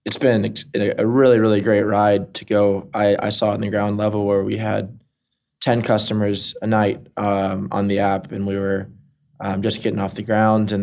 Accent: American